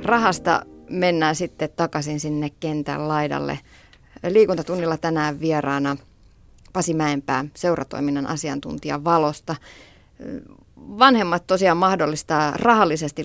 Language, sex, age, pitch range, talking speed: Finnish, female, 30-49, 145-180 Hz, 80 wpm